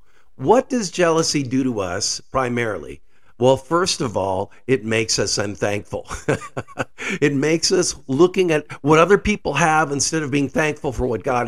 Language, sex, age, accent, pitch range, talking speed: English, male, 50-69, American, 135-185 Hz, 160 wpm